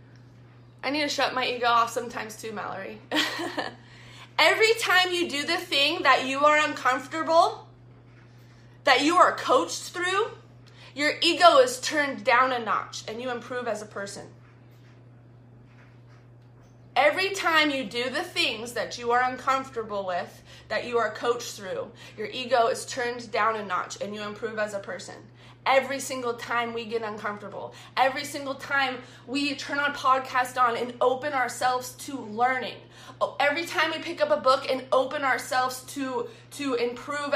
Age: 20-39